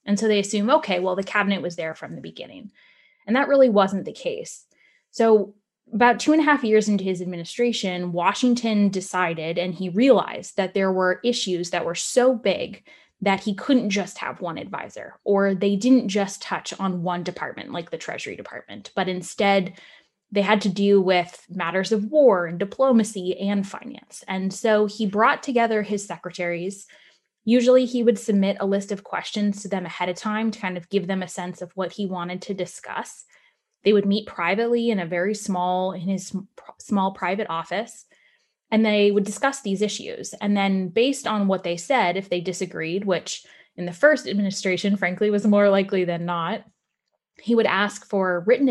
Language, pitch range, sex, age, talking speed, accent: English, 185-220 Hz, female, 10-29, 190 wpm, American